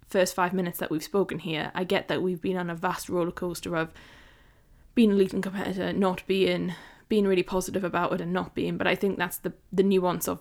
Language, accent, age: English, British, 10-29